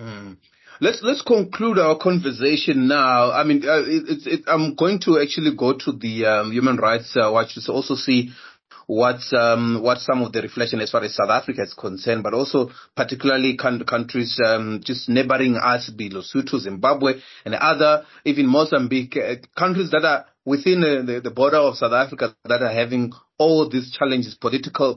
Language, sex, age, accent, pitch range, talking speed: English, male, 30-49, South African, 115-150 Hz, 185 wpm